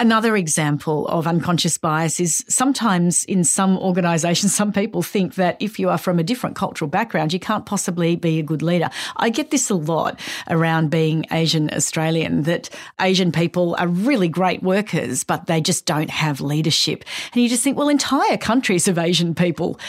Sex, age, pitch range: female, 40-59, 160-195 Hz